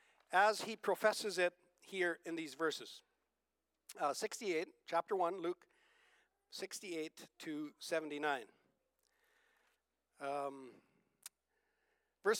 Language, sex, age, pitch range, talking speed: English, male, 60-79, 205-315 Hz, 85 wpm